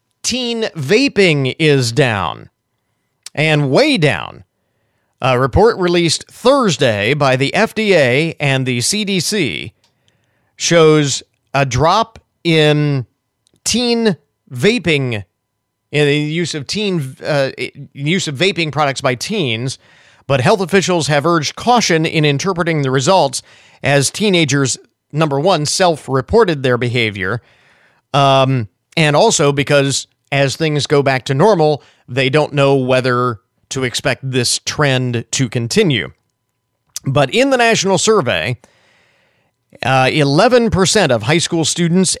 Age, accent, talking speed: 40-59, American, 120 wpm